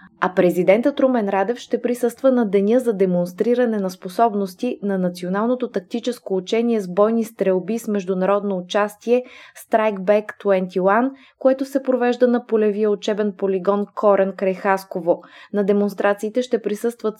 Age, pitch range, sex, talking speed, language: 20-39, 195-235 Hz, female, 130 wpm, Bulgarian